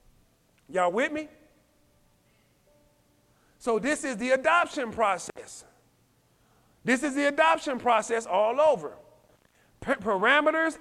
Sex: male